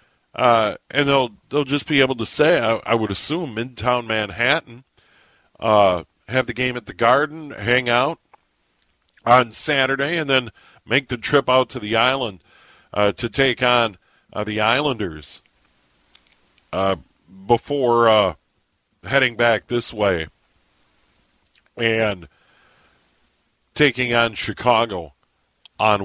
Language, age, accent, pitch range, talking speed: English, 50-69, American, 100-130 Hz, 125 wpm